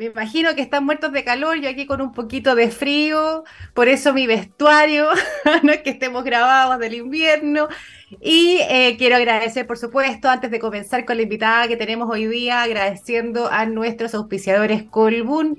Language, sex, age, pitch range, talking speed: Spanish, female, 20-39, 220-285 Hz, 180 wpm